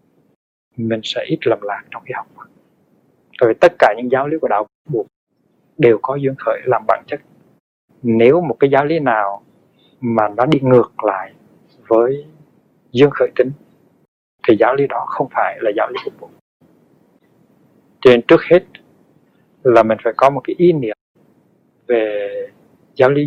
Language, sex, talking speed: Vietnamese, male, 165 wpm